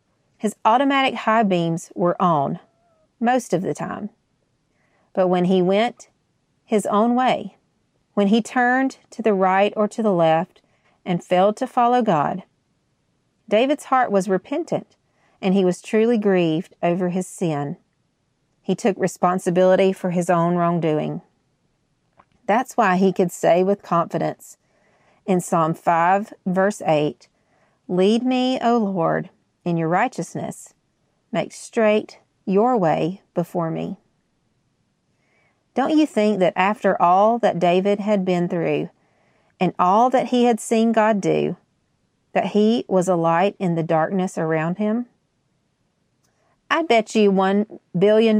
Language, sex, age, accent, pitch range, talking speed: English, female, 40-59, American, 175-220 Hz, 135 wpm